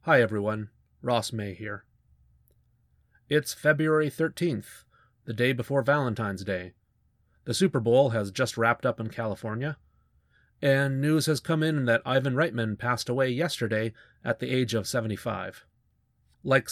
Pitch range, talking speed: 110-140 Hz, 140 wpm